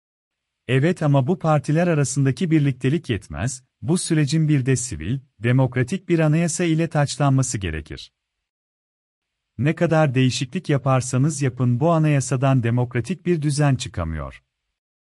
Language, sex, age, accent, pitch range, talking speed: Turkish, male, 40-59, native, 120-155 Hz, 115 wpm